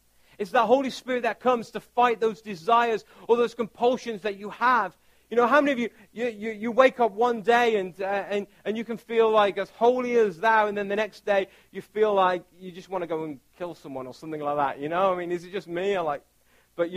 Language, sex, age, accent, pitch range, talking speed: English, male, 40-59, British, 170-225 Hz, 255 wpm